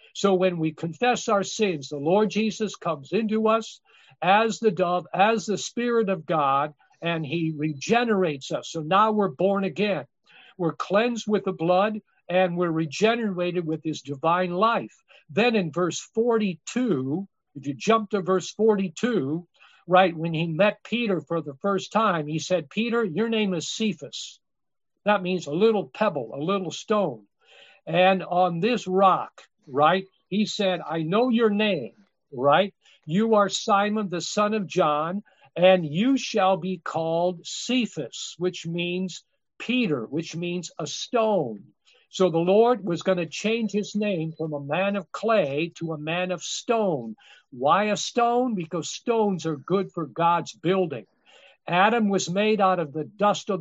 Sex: male